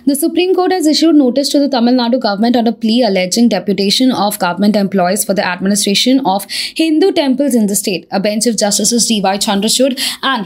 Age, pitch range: 20-39, 205-265 Hz